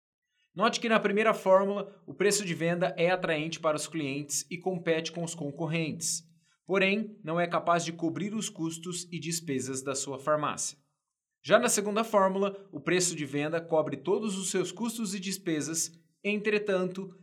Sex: male